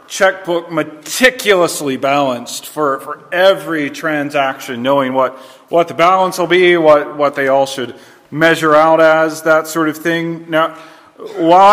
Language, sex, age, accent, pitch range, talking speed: English, male, 40-59, American, 140-170 Hz, 145 wpm